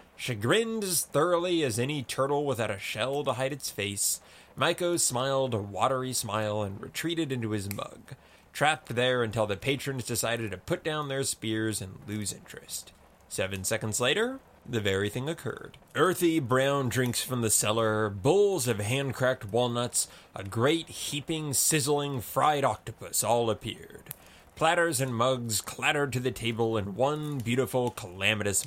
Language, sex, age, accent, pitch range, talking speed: English, male, 20-39, American, 110-145 Hz, 155 wpm